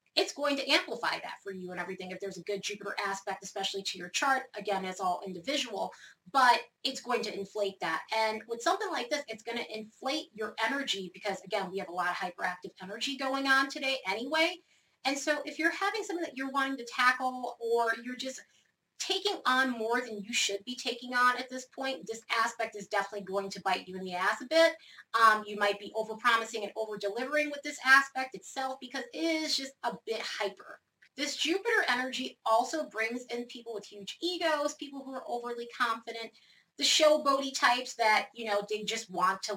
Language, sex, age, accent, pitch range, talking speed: English, female, 30-49, American, 200-270 Hz, 205 wpm